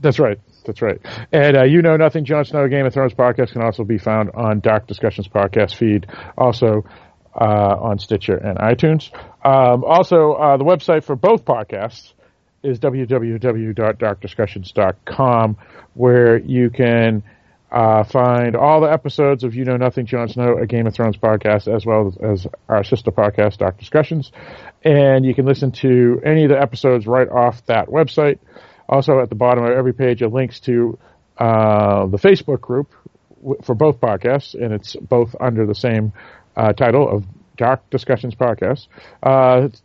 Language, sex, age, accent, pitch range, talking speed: English, male, 40-59, American, 110-135 Hz, 170 wpm